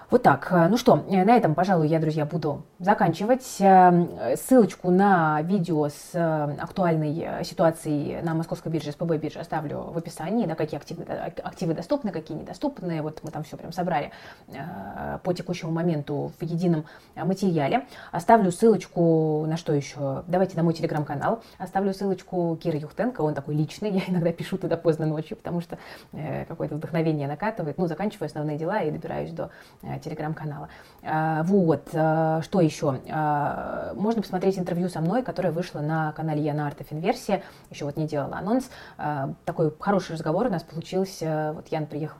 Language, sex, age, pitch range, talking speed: Russian, female, 20-39, 155-185 Hz, 160 wpm